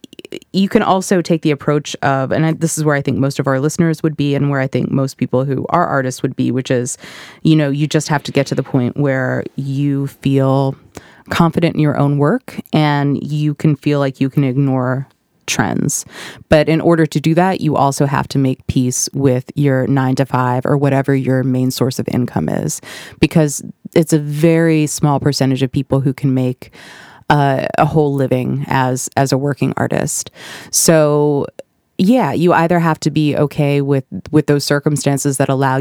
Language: English